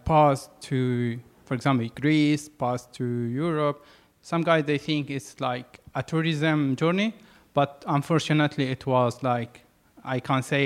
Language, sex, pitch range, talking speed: English, male, 130-155 Hz, 140 wpm